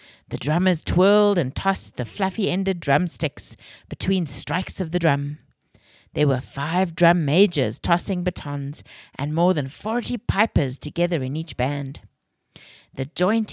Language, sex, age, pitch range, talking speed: English, female, 60-79, 140-190 Hz, 140 wpm